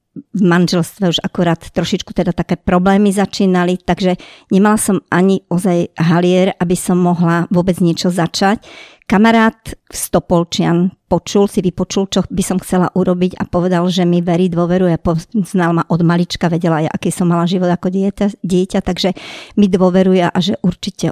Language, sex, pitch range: Slovak, male, 175-200 Hz